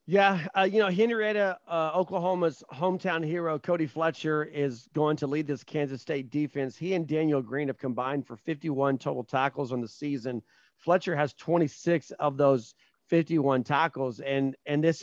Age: 40-59